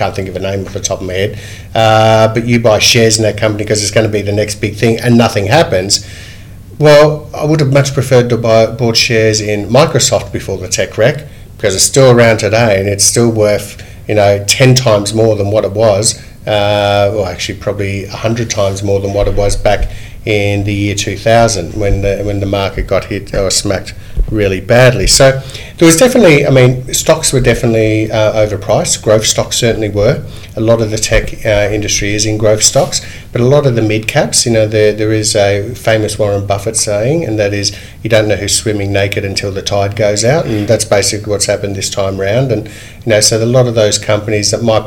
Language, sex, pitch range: English, male, 100-115 Hz